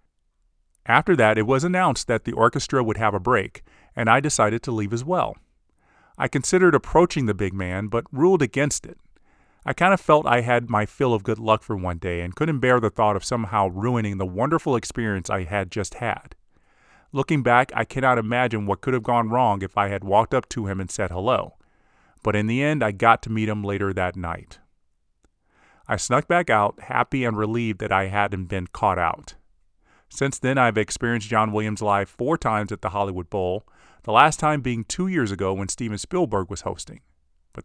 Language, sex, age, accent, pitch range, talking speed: English, male, 30-49, American, 100-125 Hz, 205 wpm